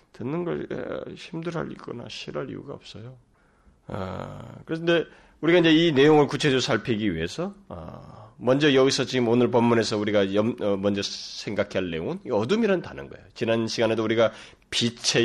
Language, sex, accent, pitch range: Korean, male, native, 100-165 Hz